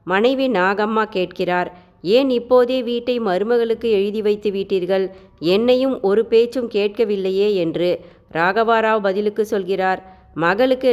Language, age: Tamil, 30-49